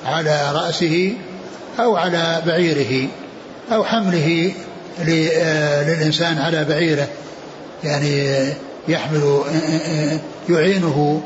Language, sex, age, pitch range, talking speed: Arabic, male, 60-79, 150-175 Hz, 70 wpm